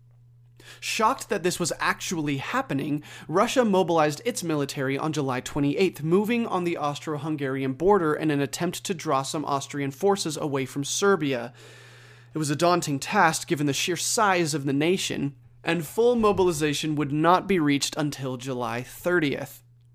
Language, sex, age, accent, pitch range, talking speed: English, male, 30-49, American, 135-175 Hz, 155 wpm